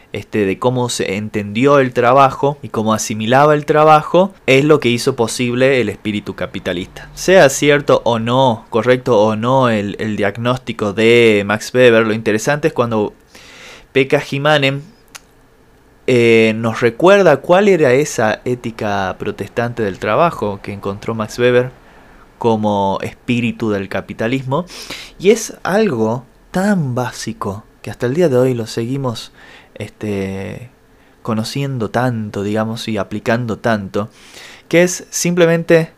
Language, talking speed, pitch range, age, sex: Spanish, 130 wpm, 110-145 Hz, 20-39, male